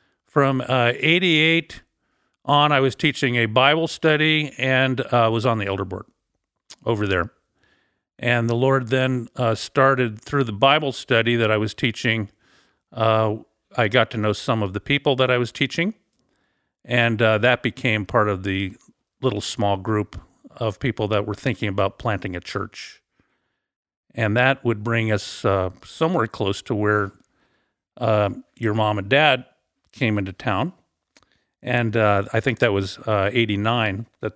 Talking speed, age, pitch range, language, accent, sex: 160 wpm, 50-69, 105-135 Hz, English, American, male